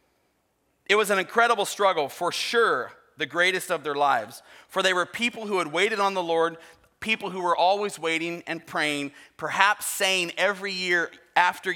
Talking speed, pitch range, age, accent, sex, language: 175 wpm, 150-205 Hz, 30-49, American, male, English